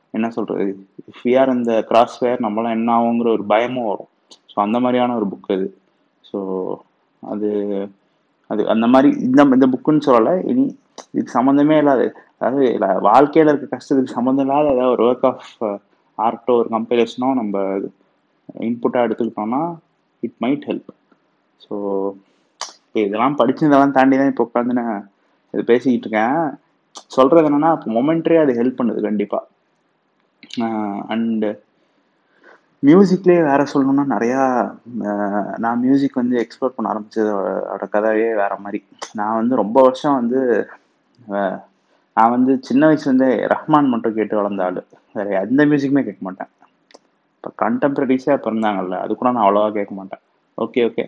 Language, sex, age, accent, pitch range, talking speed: Tamil, male, 20-39, native, 105-135 Hz, 135 wpm